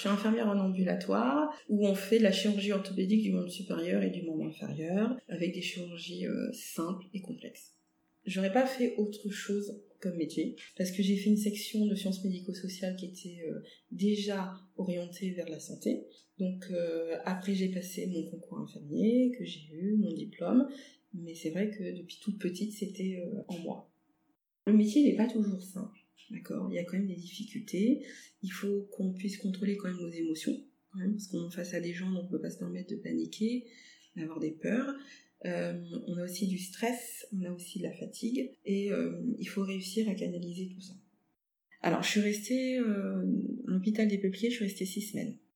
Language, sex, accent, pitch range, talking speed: French, female, French, 180-215 Hz, 200 wpm